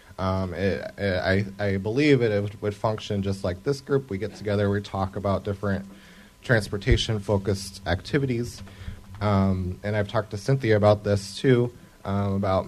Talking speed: 165 wpm